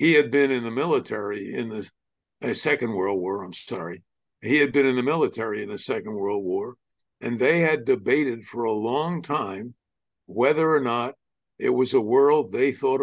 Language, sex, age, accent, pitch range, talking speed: English, male, 60-79, American, 110-135 Hz, 195 wpm